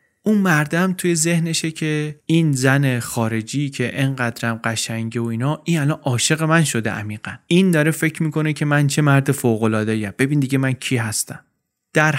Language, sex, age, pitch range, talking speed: Persian, male, 30-49, 120-155 Hz, 175 wpm